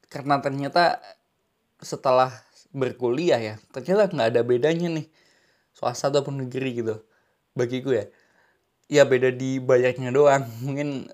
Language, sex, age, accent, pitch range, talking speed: Indonesian, male, 20-39, native, 120-145 Hz, 120 wpm